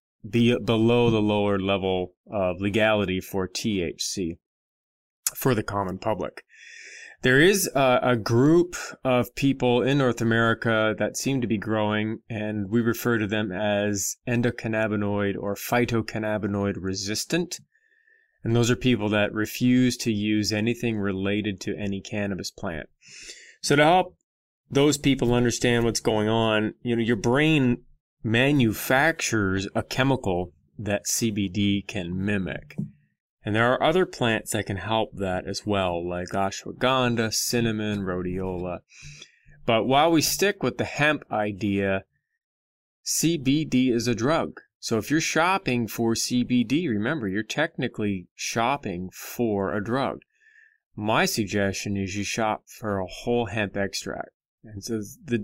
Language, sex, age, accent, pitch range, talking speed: English, male, 20-39, American, 100-125 Hz, 135 wpm